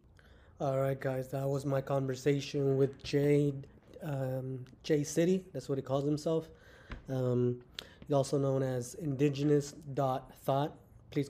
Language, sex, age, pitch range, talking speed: English, male, 20-39, 130-145 Hz, 125 wpm